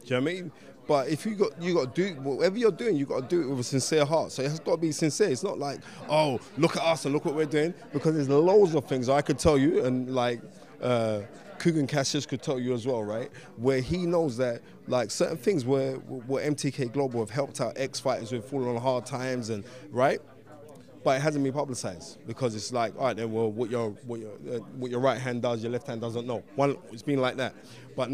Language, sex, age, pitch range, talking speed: English, male, 20-39, 120-150 Hz, 255 wpm